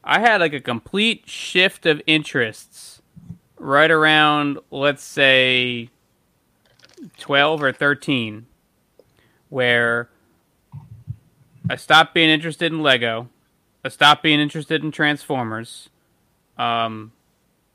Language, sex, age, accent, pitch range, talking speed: English, male, 20-39, American, 120-150 Hz, 100 wpm